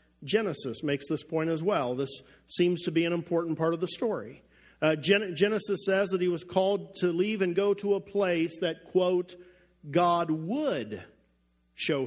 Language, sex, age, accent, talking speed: English, male, 50-69, American, 175 wpm